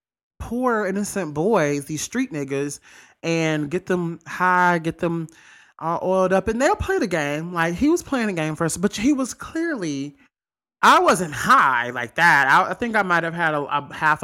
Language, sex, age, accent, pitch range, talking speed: English, male, 20-39, American, 140-180 Hz, 195 wpm